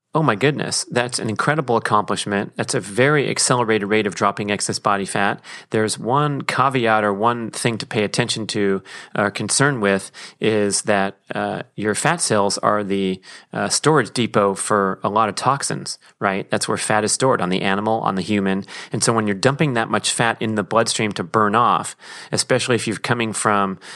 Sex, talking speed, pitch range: male, 195 wpm, 100-115 Hz